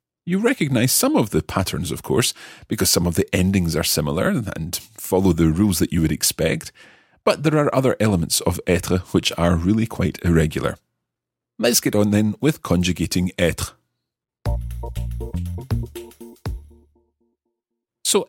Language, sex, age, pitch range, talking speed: English, male, 40-59, 85-115 Hz, 140 wpm